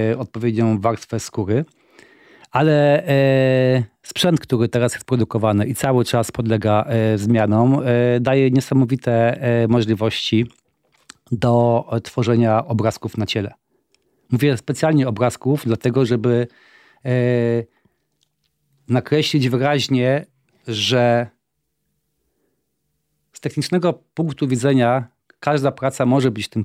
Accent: native